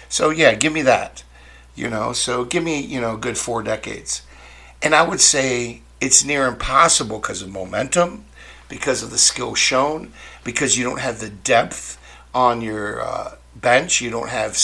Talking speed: 180 wpm